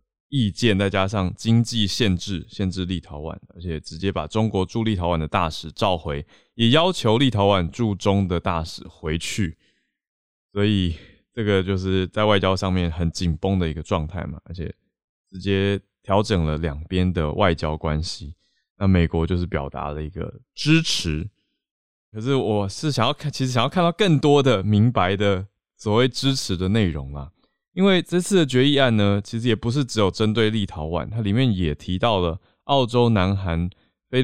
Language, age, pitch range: Chinese, 20-39, 85-115 Hz